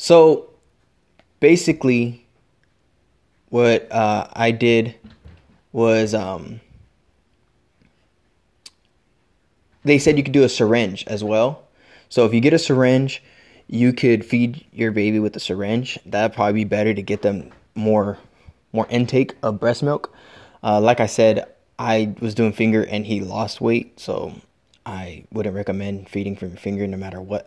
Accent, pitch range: American, 105-125 Hz